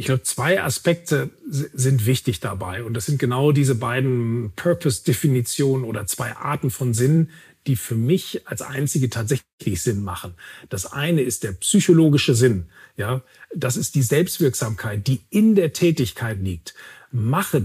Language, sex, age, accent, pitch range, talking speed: German, male, 40-59, German, 130-175 Hz, 150 wpm